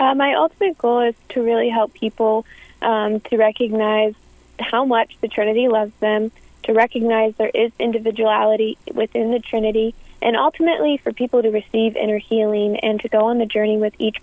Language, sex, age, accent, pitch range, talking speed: English, female, 20-39, American, 215-235 Hz, 175 wpm